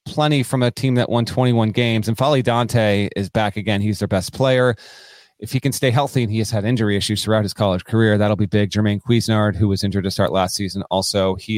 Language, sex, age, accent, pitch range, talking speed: English, male, 30-49, American, 105-135 Hz, 245 wpm